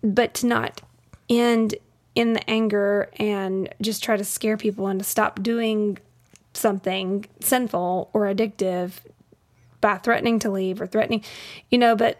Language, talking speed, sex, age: English, 150 wpm, female, 20-39